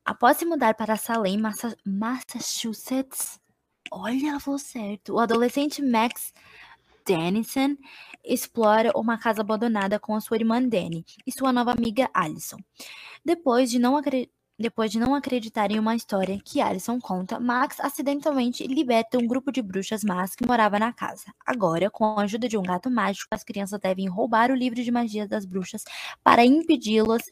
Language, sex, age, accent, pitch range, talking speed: Portuguese, female, 20-39, Brazilian, 205-250 Hz, 160 wpm